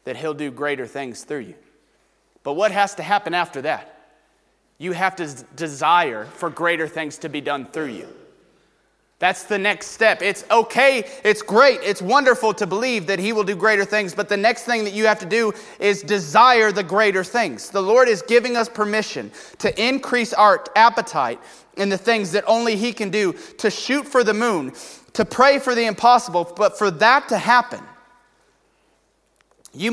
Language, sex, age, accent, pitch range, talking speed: English, male, 30-49, American, 175-230 Hz, 185 wpm